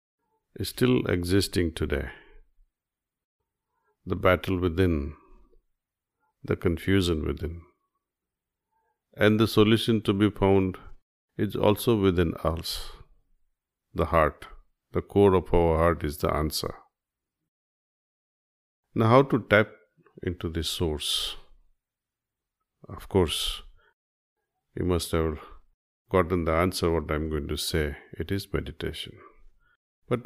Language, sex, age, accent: Hindi, male, 50-69, native